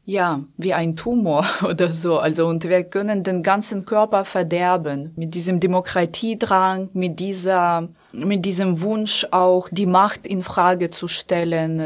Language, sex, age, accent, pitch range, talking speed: German, female, 20-39, German, 175-205 Hz, 145 wpm